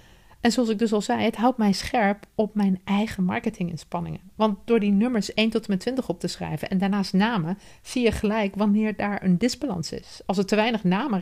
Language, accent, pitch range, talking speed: Dutch, Dutch, 170-215 Hz, 225 wpm